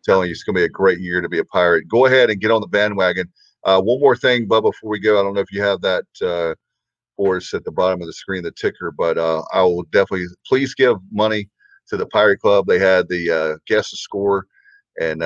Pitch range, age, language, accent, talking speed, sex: 95-135 Hz, 40-59, English, American, 255 wpm, male